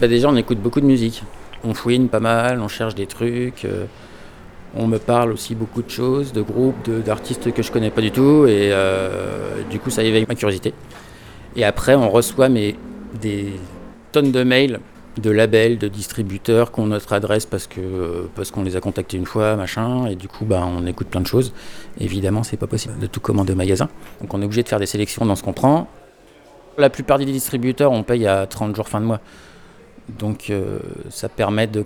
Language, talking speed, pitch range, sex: French, 215 wpm, 105-125 Hz, male